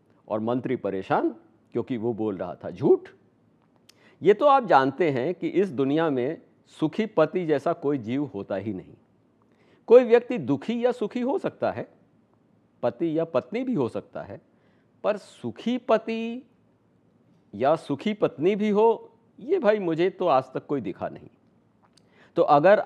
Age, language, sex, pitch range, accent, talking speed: 50-69, Hindi, male, 125-175 Hz, native, 160 wpm